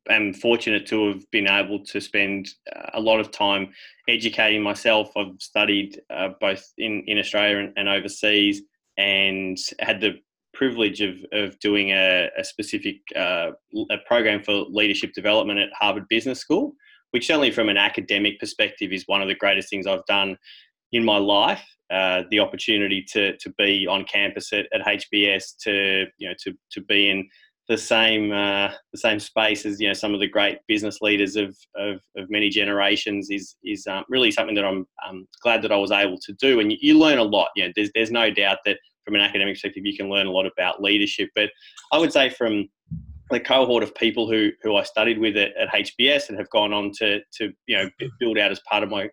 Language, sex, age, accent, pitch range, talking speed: English, male, 20-39, Australian, 100-110 Hz, 210 wpm